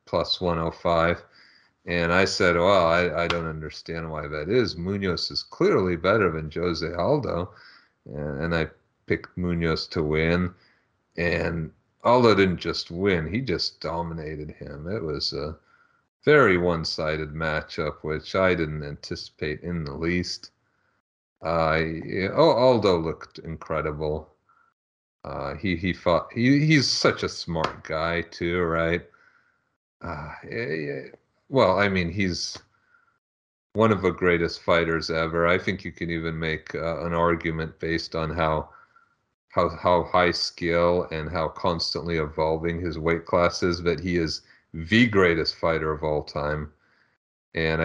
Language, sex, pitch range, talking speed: English, male, 80-90 Hz, 145 wpm